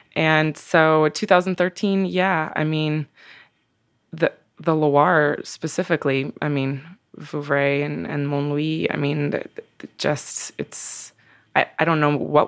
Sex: female